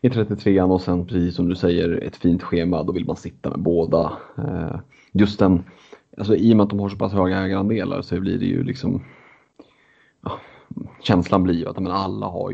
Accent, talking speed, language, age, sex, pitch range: native, 205 wpm, Swedish, 30-49, male, 90-105 Hz